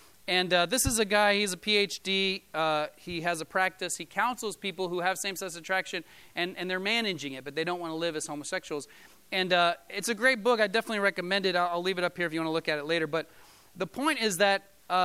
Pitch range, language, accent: 175-225 Hz, English, American